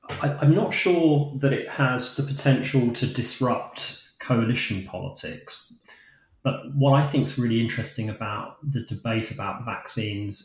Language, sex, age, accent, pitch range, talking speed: English, male, 30-49, British, 100-125 Hz, 140 wpm